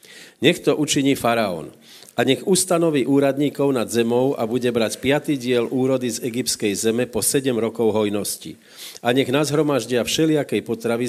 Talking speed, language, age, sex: 155 wpm, Slovak, 50-69, male